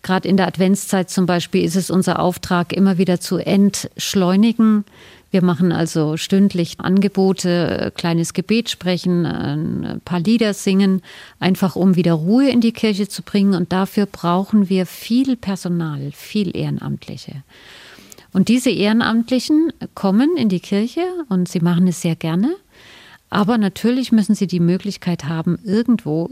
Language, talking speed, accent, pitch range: German, 145 wpm, German, 170-200 Hz